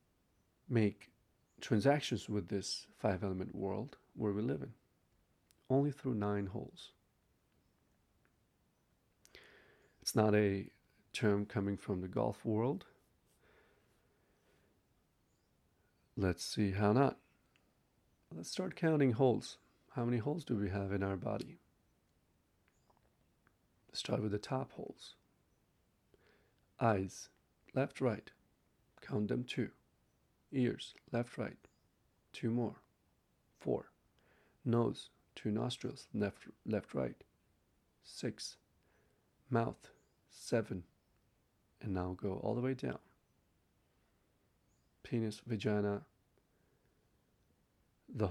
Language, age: English, 50-69